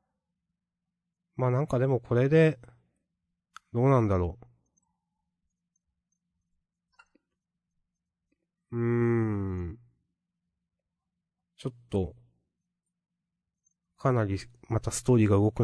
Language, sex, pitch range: Japanese, male, 95-130 Hz